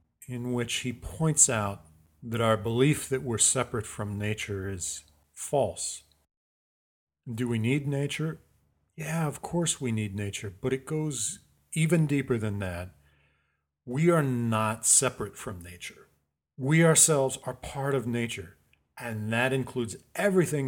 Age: 40-59